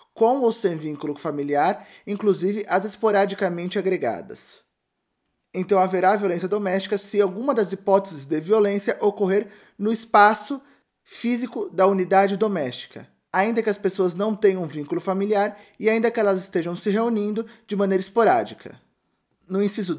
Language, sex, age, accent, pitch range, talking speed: Portuguese, male, 20-39, Brazilian, 180-215 Hz, 140 wpm